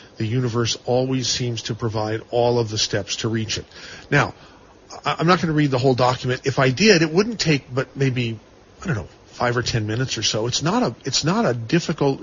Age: 40-59